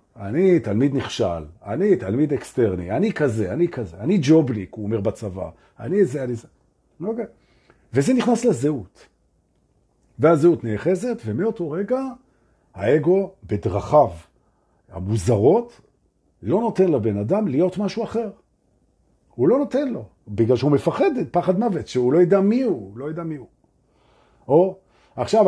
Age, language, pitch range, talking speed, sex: 50-69, Hebrew, 110-185 Hz, 110 wpm, male